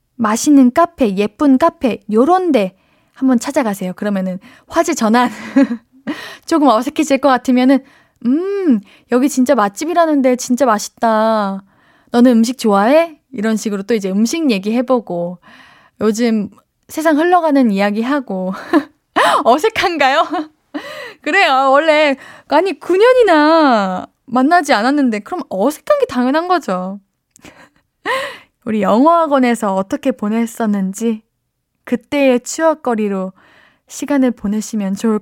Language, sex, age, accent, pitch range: Korean, female, 20-39, native, 210-290 Hz